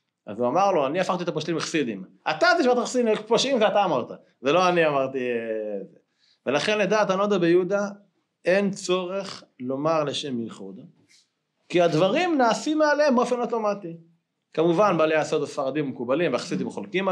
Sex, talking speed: male, 145 wpm